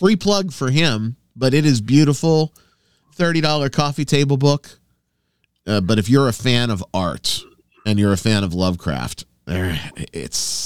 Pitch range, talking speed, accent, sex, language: 90-135 Hz, 150 wpm, American, male, English